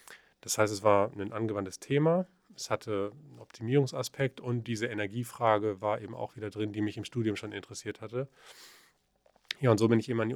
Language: German